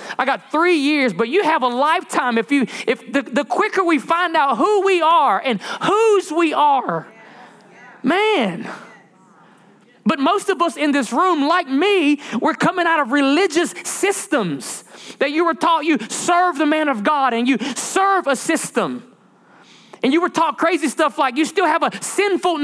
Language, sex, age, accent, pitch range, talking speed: English, male, 30-49, American, 275-345 Hz, 180 wpm